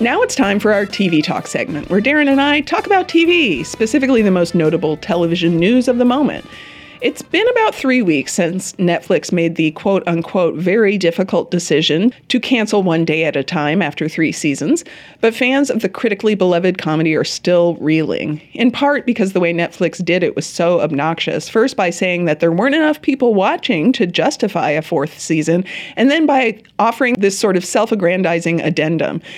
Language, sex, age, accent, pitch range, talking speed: English, female, 30-49, American, 170-240 Hz, 185 wpm